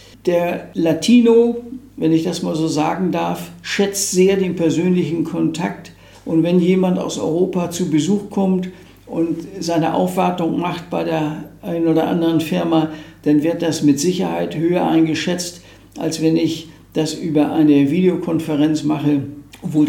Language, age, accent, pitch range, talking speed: German, 60-79, German, 155-185 Hz, 145 wpm